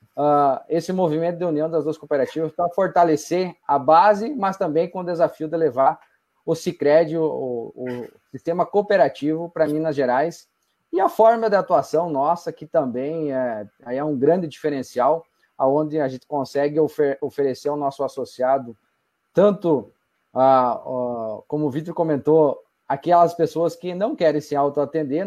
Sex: male